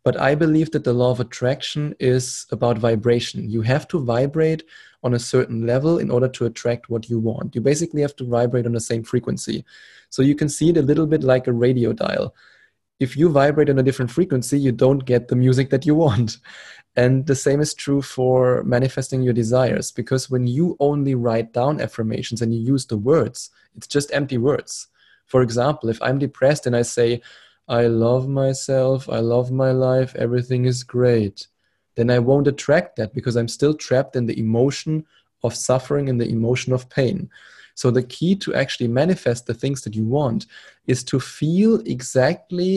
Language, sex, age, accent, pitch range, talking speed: English, male, 20-39, German, 120-140 Hz, 195 wpm